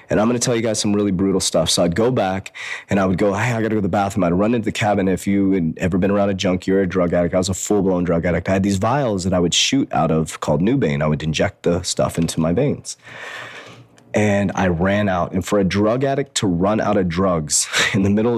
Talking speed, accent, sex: 285 wpm, American, male